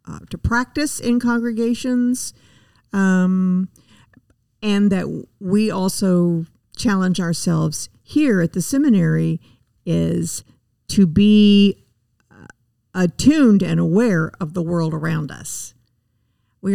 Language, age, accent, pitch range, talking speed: English, 50-69, American, 125-205 Hz, 105 wpm